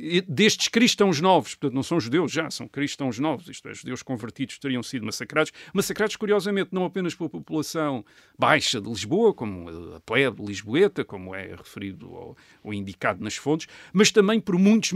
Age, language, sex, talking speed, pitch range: 50-69, Portuguese, male, 175 wpm, 125-160 Hz